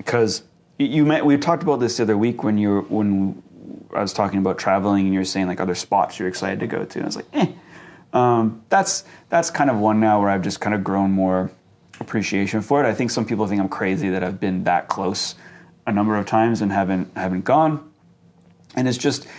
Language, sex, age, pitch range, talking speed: English, male, 30-49, 95-115 Hz, 230 wpm